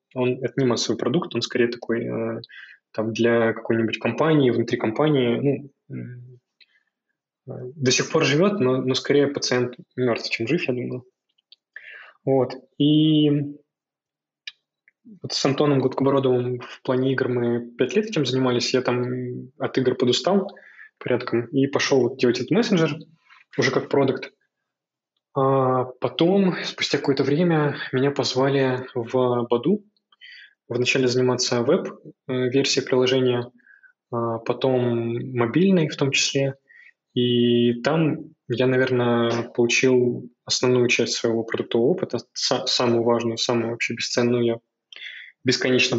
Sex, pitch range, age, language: male, 120-140 Hz, 20-39, Russian